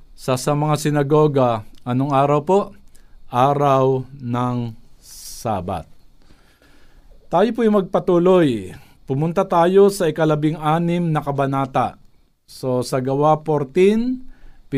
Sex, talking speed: male, 95 wpm